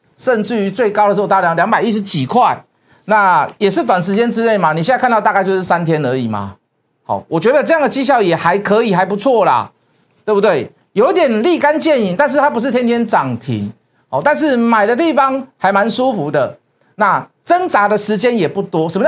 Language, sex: Chinese, male